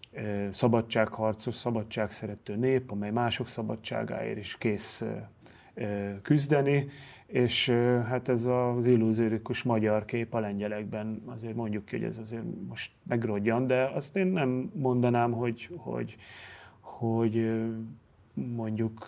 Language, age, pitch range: Hungarian, 30-49, 110-125 Hz